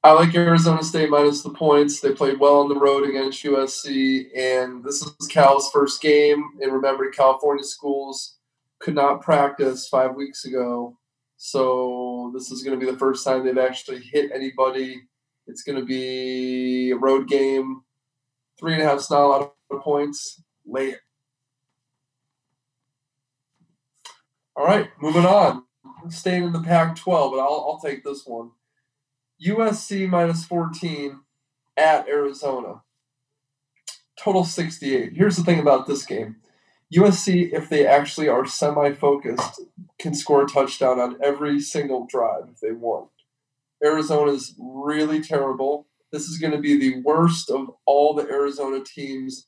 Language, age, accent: English, 20-39, American